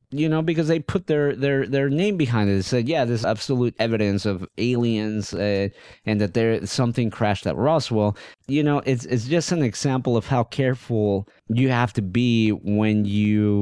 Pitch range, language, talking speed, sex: 100-130 Hz, English, 190 wpm, male